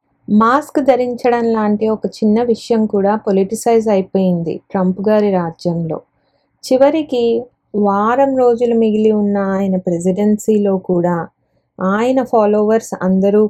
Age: 20-39